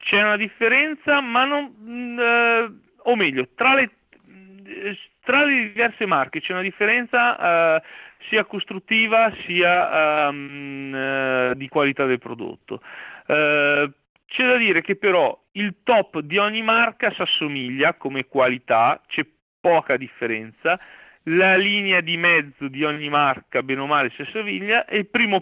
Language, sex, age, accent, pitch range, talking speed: Italian, male, 40-59, native, 135-205 Hz, 135 wpm